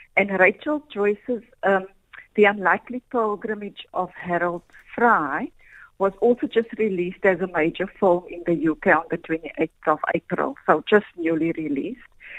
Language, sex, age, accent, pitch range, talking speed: English, female, 50-69, Indian, 175-230 Hz, 145 wpm